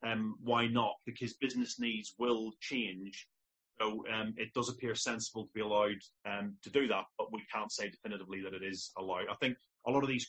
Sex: male